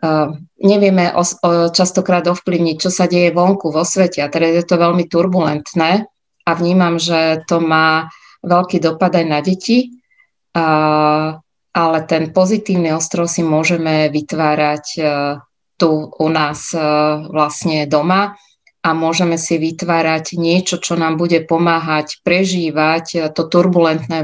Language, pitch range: Slovak, 155-180 Hz